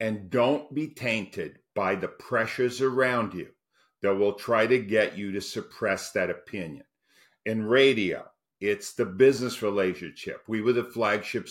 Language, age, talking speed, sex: English, 50-69, 150 wpm, male